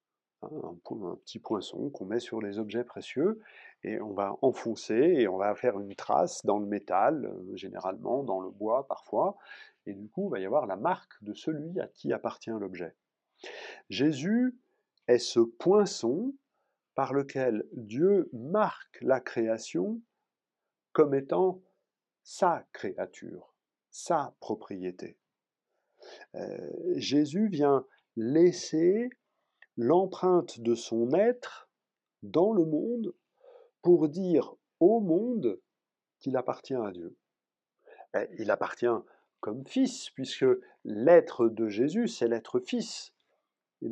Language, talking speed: French, 120 wpm